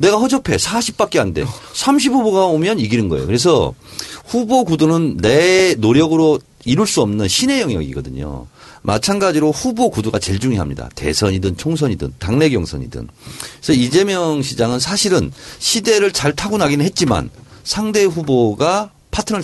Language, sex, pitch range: Korean, male, 95-165 Hz